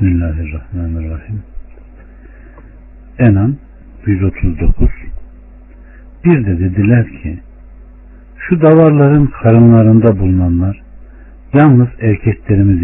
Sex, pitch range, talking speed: male, 80-120 Hz, 60 wpm